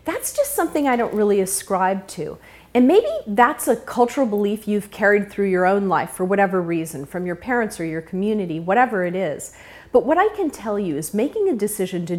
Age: 40-59